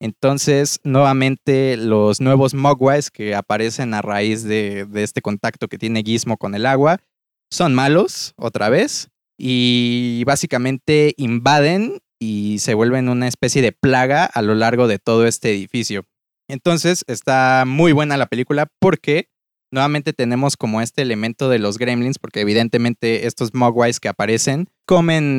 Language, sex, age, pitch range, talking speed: Spanish, male, 20-39, 115-140 Hz, 145 wpm